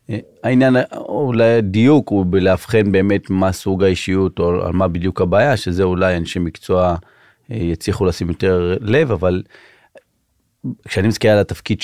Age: 30-49